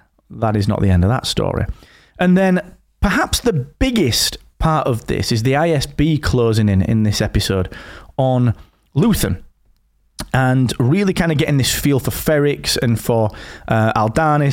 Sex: male